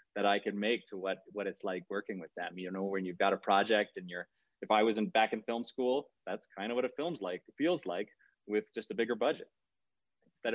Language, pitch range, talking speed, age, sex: English, 95-120 Hz, 250 wpm, 30-49, male